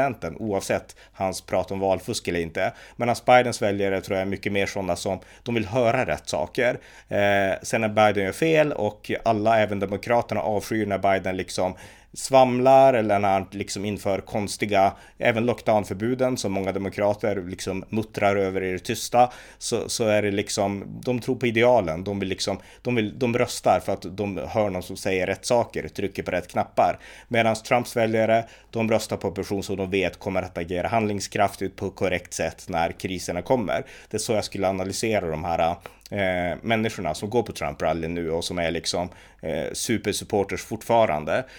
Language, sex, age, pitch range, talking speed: Swedish, male, 30-49, 95-115 Hz, 180 wpm